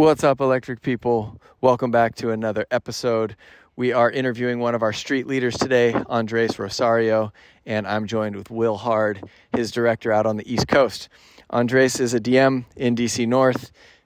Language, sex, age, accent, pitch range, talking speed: English, male, 40-59, American, 110-130 Hz, 170 wpm